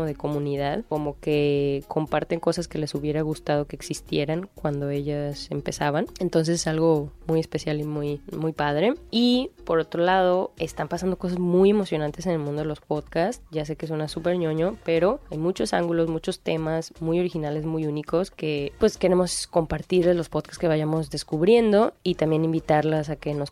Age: 20-39